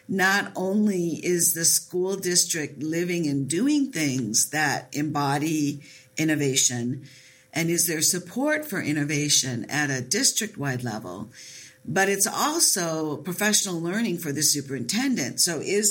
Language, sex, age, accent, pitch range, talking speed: English, female, 50-69, American, 145-185 Hz, 125 wpm